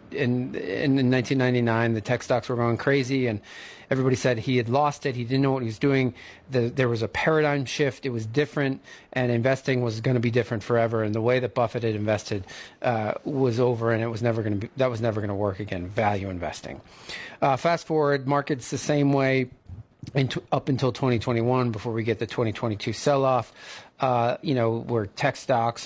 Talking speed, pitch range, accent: 210 wpm, 115-140 Hz, American